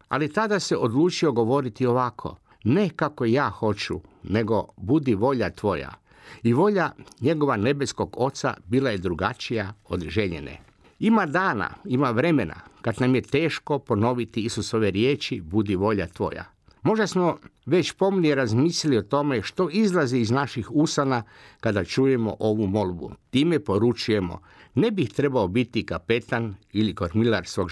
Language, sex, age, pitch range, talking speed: Croatian, male, 50-69, 105-140 Hz, 140 wpm